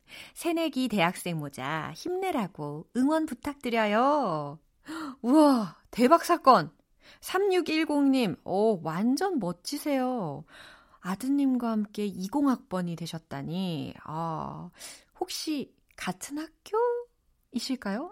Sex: female